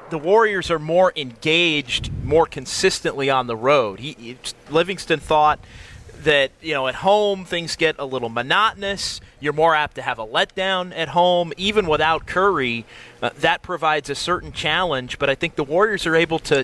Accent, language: American, English